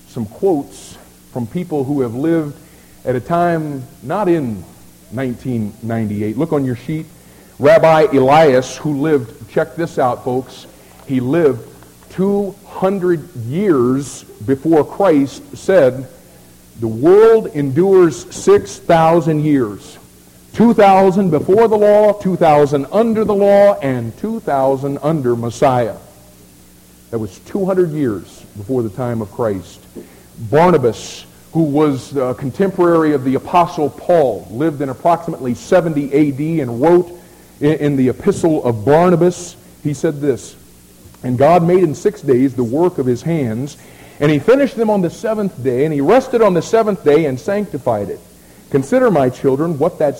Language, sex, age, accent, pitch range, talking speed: English, male, 50-69, American, 125-175 Hz, 140 wpm